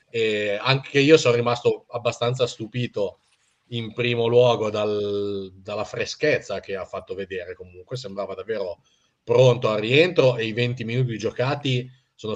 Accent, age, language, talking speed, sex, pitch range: native, 40-59, Italian, 130 wpm, male, 100-115 Hz